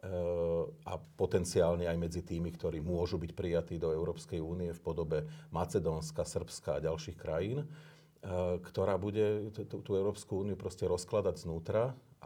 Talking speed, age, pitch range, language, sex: 130 wpm, 40-59, 90-115 Hz, Slovak, male